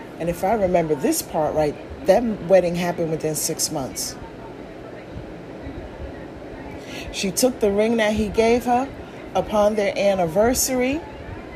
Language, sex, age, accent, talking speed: English, female, 40-59, American, 125 wpm